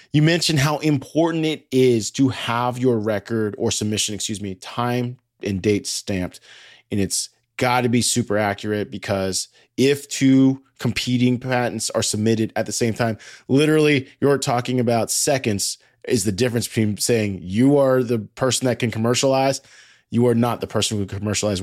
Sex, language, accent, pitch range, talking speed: male, English, American, 110-140 Hz, 165 wpm